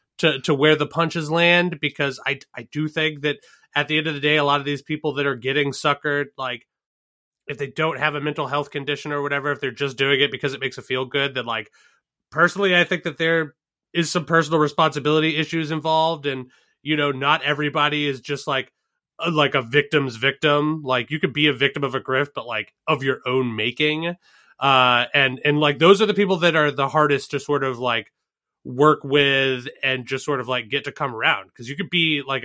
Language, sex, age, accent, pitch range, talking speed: English, male, 30-49, American, 130-155 Hz, 225 wpm